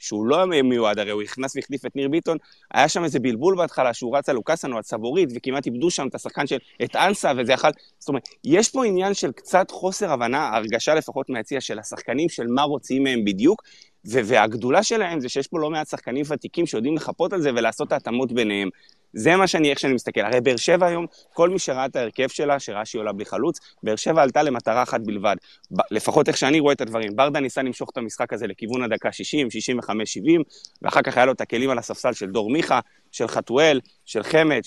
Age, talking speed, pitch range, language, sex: 20-39, 215 wpm, 120-165 Hz, Hebrew, male